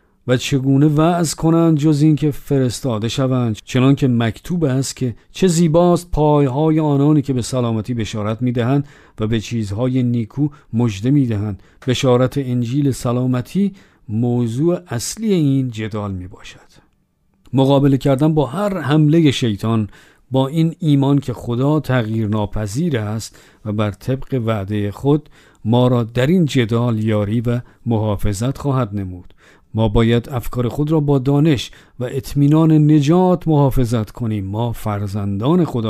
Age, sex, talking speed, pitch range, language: 50-69, male, 135 wpm, 110-150 Hz, Persian